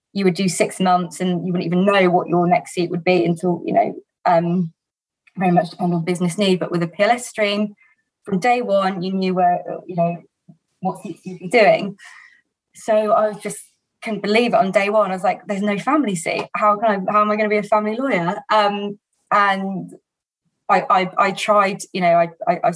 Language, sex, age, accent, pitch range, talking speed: English, female, 20-39, British, 175-205 Hz, 215 wpm